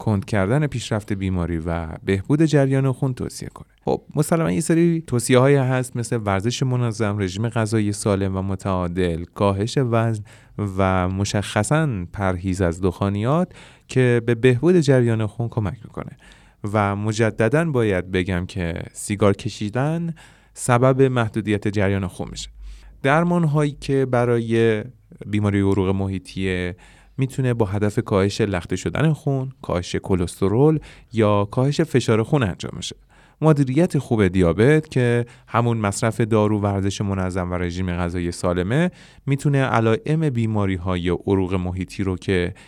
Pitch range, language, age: 95-130 Hz, Persian, 30-49